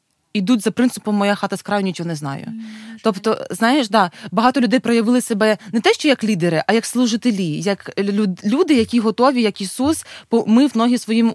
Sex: female